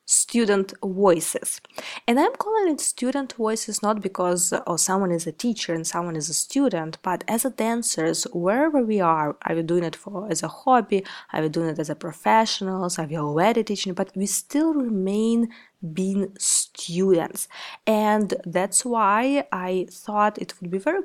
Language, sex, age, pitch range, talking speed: English, female, 20-39, 175-230 Hz, 175 wpm